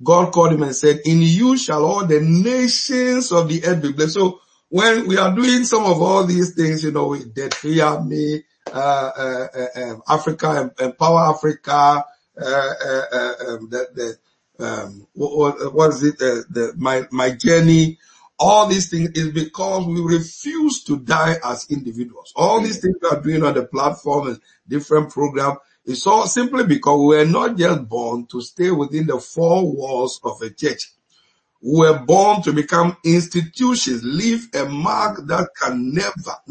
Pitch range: 140-185 Hz